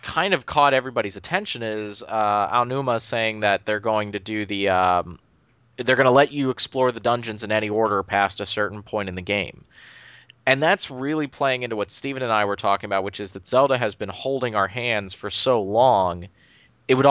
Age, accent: 30-49, American